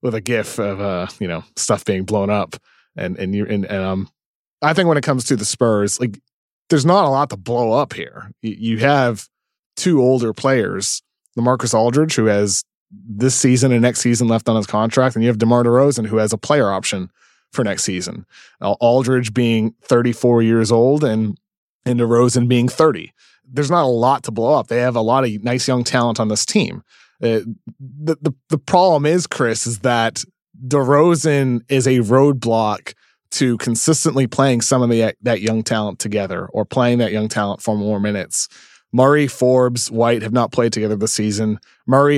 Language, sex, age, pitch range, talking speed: English, male, 30-49, 110-130 Hz, 190 wpm